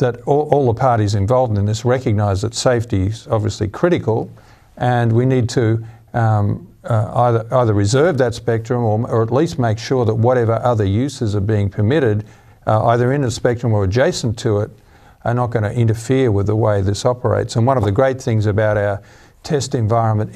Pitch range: 105-120 Hz